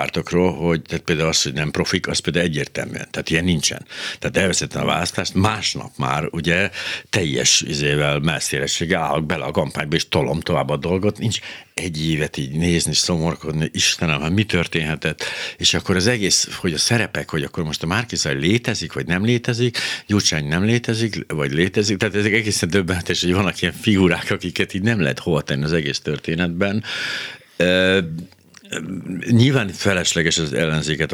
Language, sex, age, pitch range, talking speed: Hungarian, male, 60-79, 80-105 Hz, 160 wpm